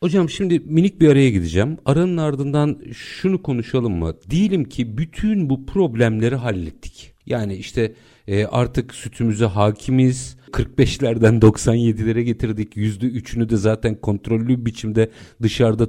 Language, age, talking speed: Turkish, 50-69, 120 wpm